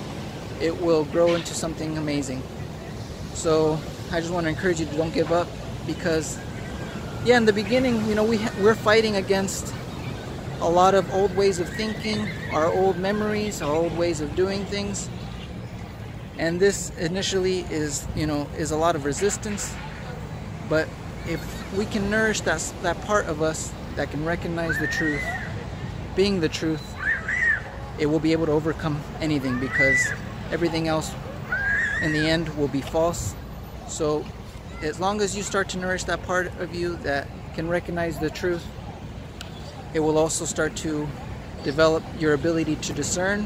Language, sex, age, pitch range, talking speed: English, male, 30-49, 150-195 Hz, 160 wpm